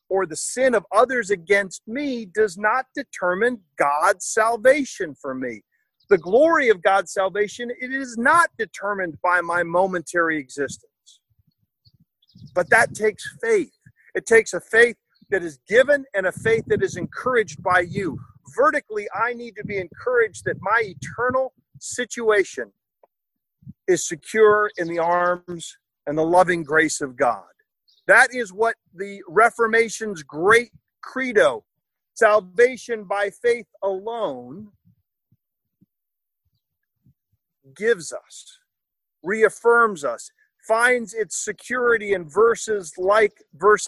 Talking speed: 120 wpm